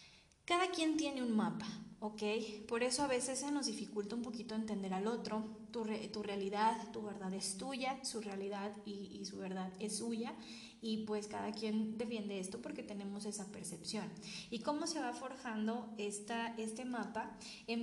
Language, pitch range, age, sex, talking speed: Spanish, 205-230 Hz, 20-39, female, 180 wpm